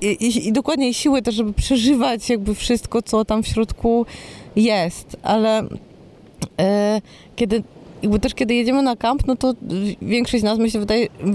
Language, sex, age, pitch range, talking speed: Polish, female, 20-39, 185-225 Hz, 170 wpm